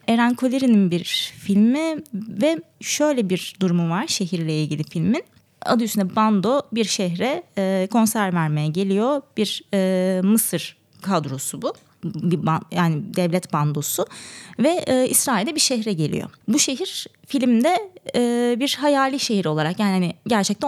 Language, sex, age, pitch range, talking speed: Turkish, female, 20-39, 185-245 Hz, 120 wpm